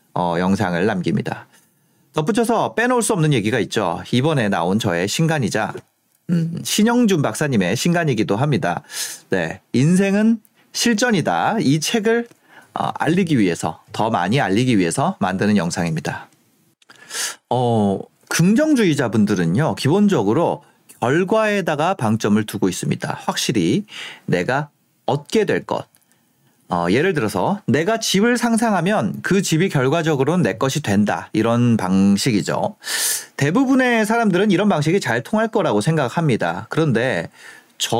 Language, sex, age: Korean, male, 40-59